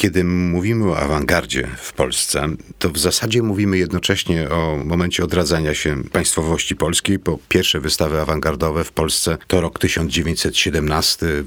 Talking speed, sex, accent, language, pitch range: 135 wpm, male, native, Polish, 75-95 Hz